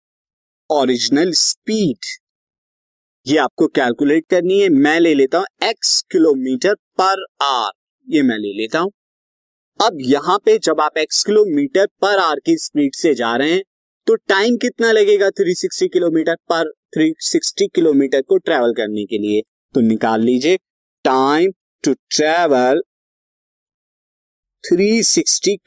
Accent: native